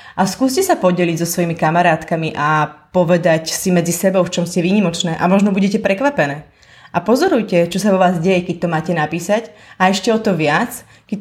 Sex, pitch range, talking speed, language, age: female, 175-220 Hz, 200 wpm, Slovak, 30-49